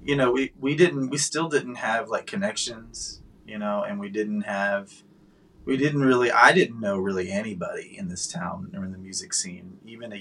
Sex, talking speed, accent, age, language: male, 205 wpm, American, 20-39, English